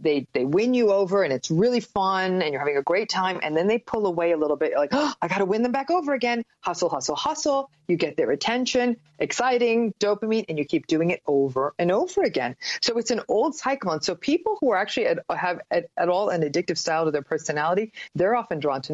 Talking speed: 240 wpm